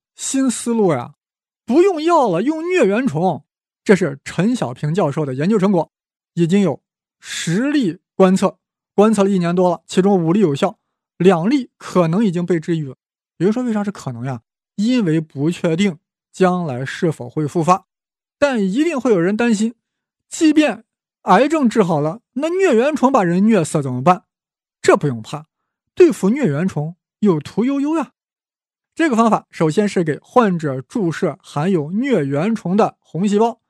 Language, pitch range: Chinese, 155-230 Hz